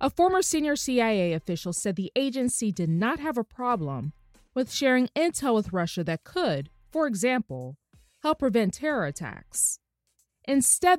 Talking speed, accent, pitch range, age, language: 145 wpm, American, 175-265 Hz, 20-39, English